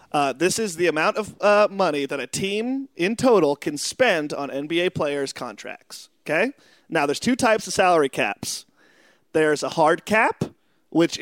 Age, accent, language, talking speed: 30-49, American, English, 170 wpm